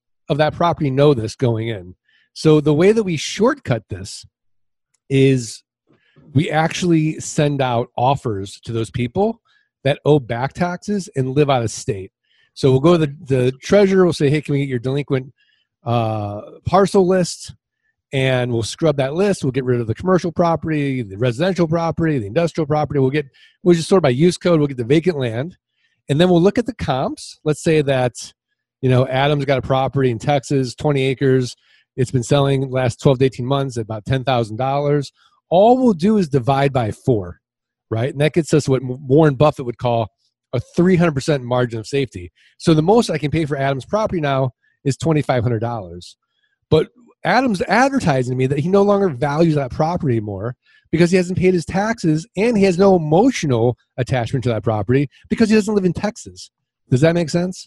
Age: 40-59